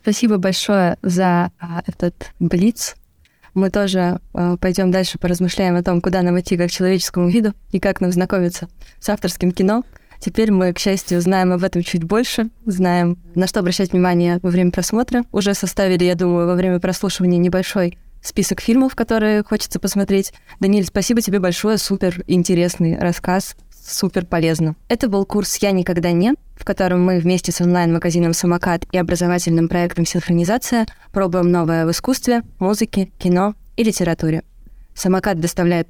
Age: 20-39